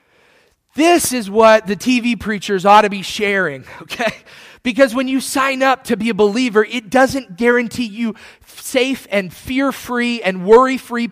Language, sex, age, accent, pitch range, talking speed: English, male, 30-49, American, 180-245 Hz, 155 wpm